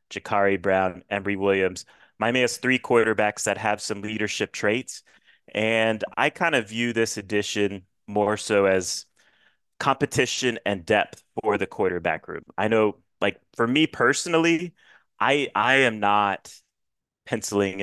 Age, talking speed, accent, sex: 30-49, 140 wpm, American, male